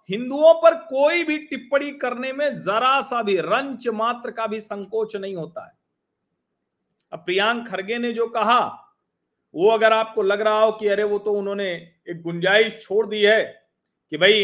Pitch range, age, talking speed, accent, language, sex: 175-235 Hz, 40-59, 175 wpm, native, Hindi, male